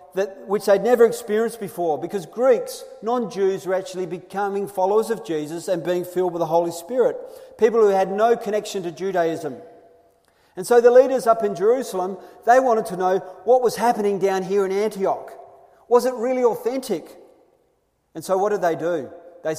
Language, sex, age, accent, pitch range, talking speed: English, male, 40-59, Australian, 170-220 Hz, 180 wpm